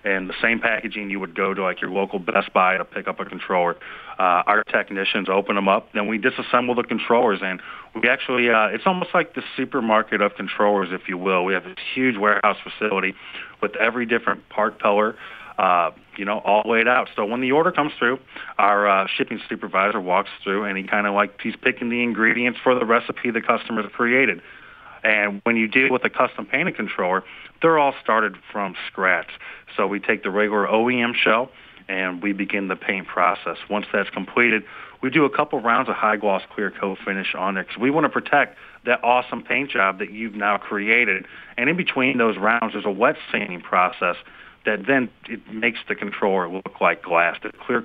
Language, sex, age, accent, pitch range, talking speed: English, male, 30-49, American, 100-120 Hz, 205 wpm